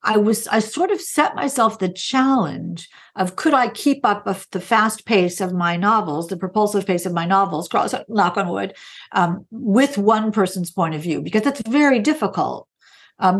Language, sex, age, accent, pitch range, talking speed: English, female, 50-69, American, 185-255 Hz, 190 wpm